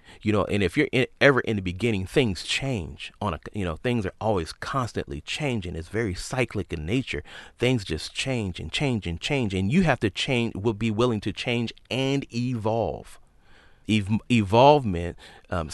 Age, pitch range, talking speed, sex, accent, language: 40-59, 90-115 Hz, 170 wpm, male, American, English